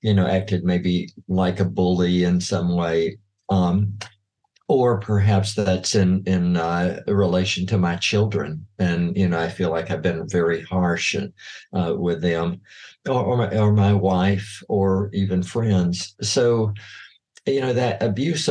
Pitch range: 90-105 Hz